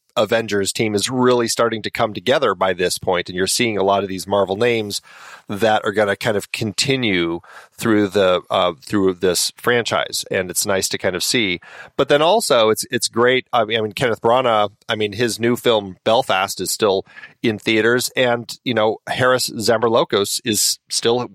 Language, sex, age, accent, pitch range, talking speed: English, male, 30-49, American, 95-115 Hz, 195 wpm